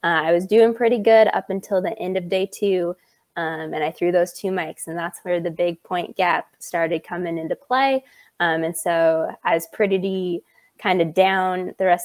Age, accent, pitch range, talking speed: 20-39, American, 175-195 Hz, 210 wpm